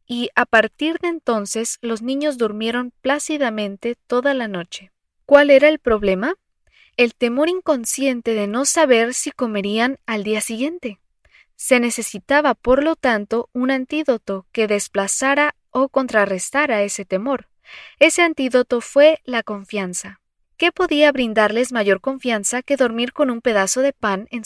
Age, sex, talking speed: 20-39, female, 140 wpm